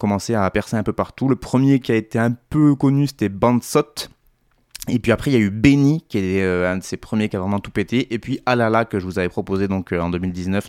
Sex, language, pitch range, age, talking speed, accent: male, French, 95-120 Hz, 20-39, 260 wpm, French